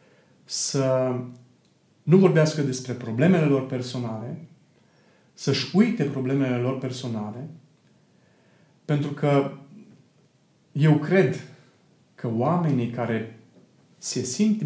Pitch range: 125-160 Hz